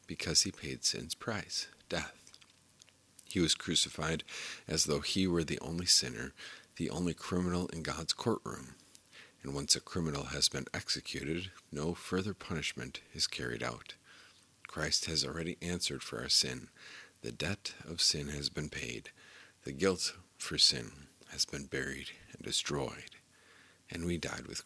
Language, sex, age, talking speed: English, male, 50-69, 150 wpm